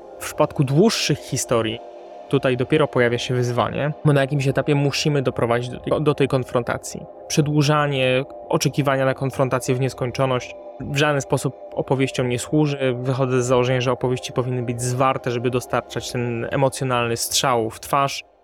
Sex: male